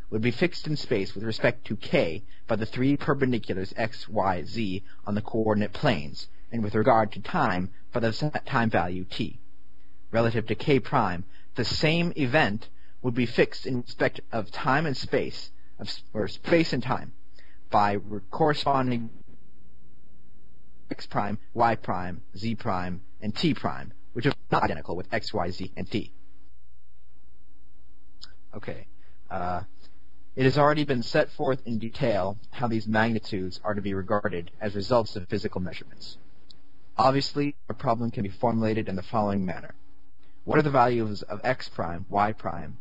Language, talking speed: English, 155 wpm